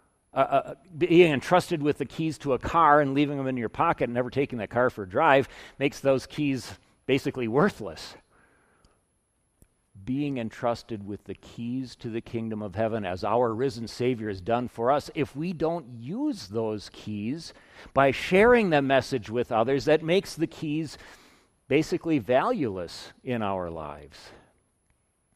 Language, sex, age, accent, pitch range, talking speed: English, male, 50-69, American, 110-150 Hz, 160 wpm